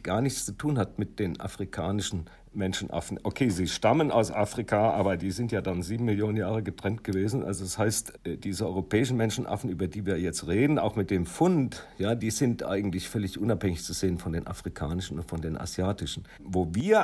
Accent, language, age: German, German, 50-69